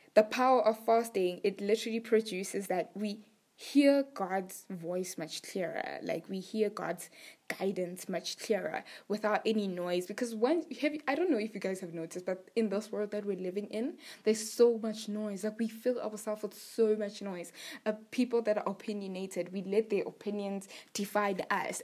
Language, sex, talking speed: English, female, 180 wpm